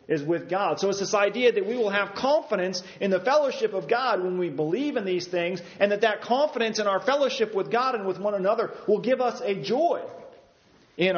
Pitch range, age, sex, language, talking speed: 165-260 Hz, 40-59, male, English, 225 wpm